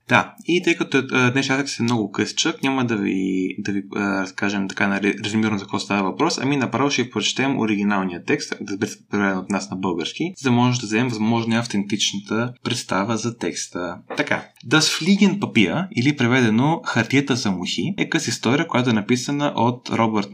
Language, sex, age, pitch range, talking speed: Bulgarian, male, 20-39, 110-140 Hz, 185 wpm